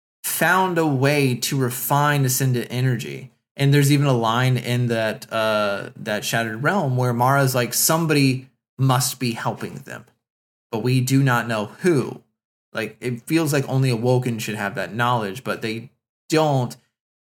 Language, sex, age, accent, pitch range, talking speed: English, male, 20-39, American, 115-140 Hz, 155 wpm